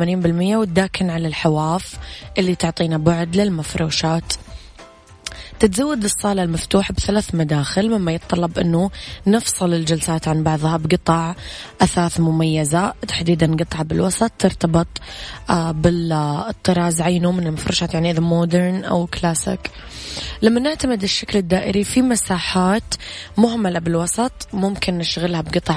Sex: female